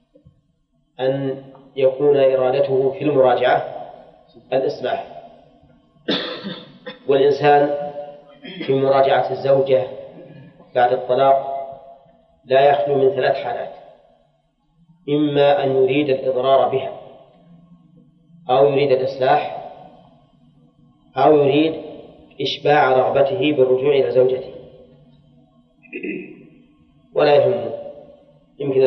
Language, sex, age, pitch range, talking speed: Arabic, male, 30-49, 130-145 Hz, 75 wpm